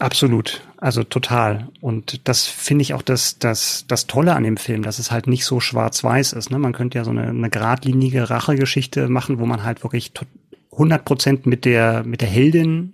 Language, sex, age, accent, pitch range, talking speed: German, male, 30-49, German, 120-145 Hz, 205 wpm